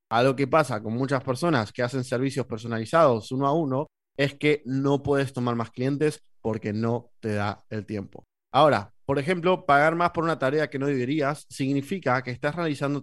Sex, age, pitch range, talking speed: male, 20-39, 120-150 Hz, 195 wpm